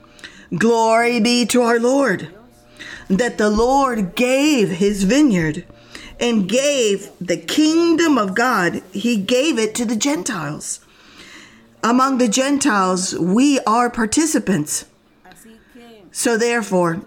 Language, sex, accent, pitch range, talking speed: English, female, American, 190-255 Hz, 110 wpm